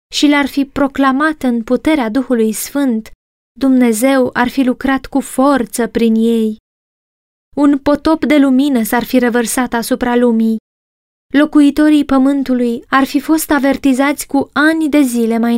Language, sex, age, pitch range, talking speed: Romanian, female, 20-39, 235-285 Hz, 140 wpm